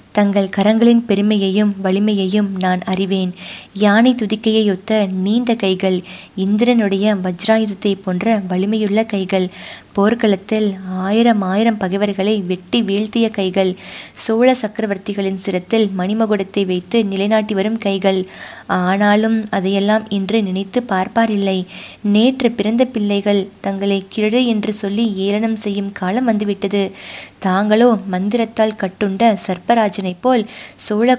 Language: Tamil